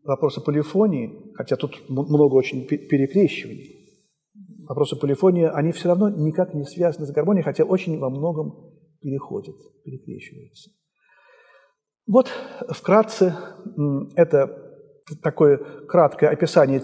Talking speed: 105 wpm